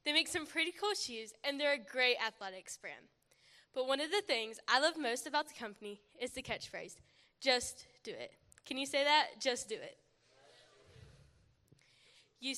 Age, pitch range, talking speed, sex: 10-29, 220-310 Hz, 175 wpm, female